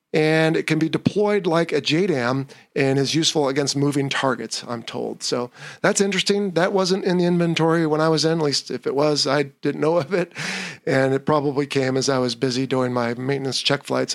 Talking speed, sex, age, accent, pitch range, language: 215 wpm, male, 40-59, American, 140-175 Hz, English